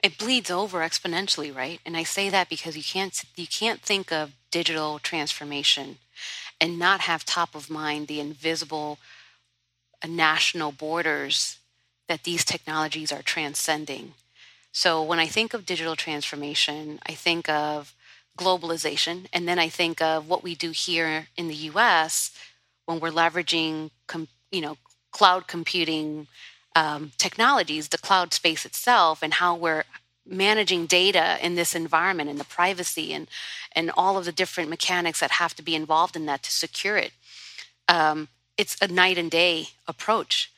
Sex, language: female, English